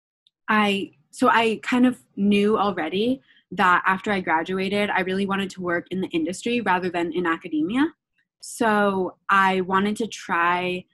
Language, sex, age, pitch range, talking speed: English, female, 20-39, 175-210 Hz, 155 wpm